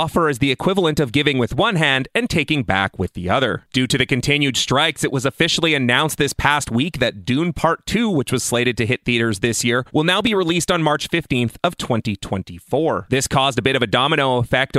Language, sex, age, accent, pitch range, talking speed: English, male, 30-49, American, 120-160 Hz, 225 wpm